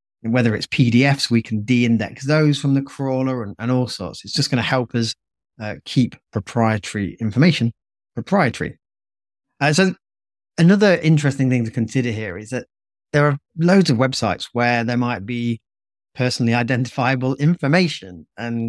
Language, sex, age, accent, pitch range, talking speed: English, male, 30-49, British, 110-135 Hz, 155 wpm